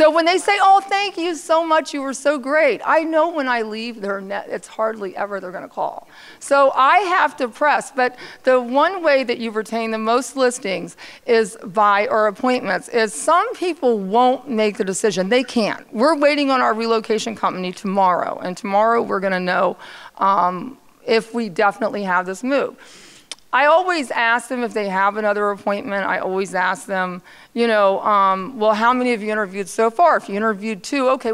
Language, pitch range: English, 205-265 Hz